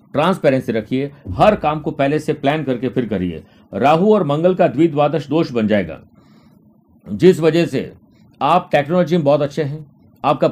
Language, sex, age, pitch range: Hindi, male, 50-69, 125-155 Hz